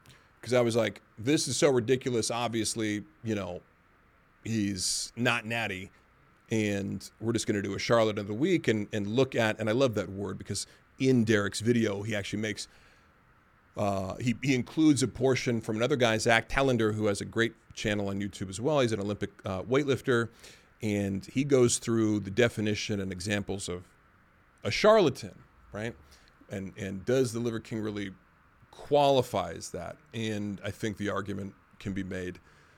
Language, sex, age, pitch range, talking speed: English, male, 40-59, 100-130 Hz, 175 wpm